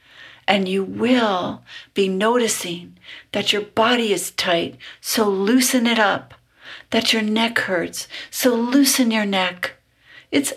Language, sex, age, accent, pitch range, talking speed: English, female, 60-79, American, 180-235 Hz, 130 wpm